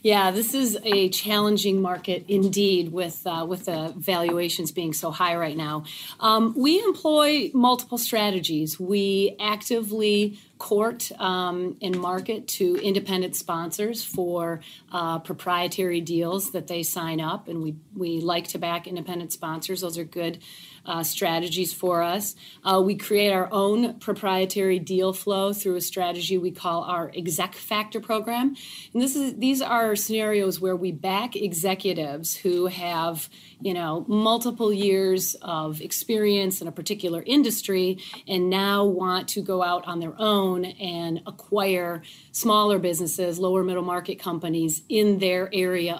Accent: American